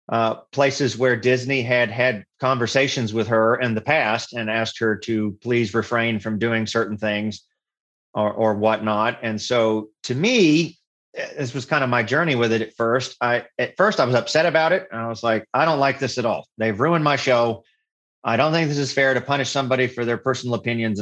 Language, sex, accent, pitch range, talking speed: English, male, American, 115-140 Hz, 210 wpm